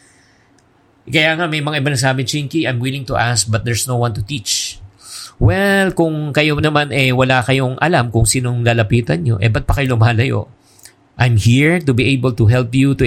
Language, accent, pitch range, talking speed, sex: English, Filipino, 115-145 Hz, 200 wpm, male